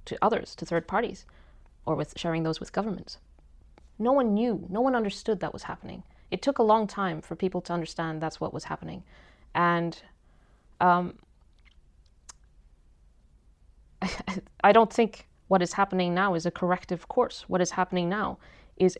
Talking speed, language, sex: 160 wpm, English, female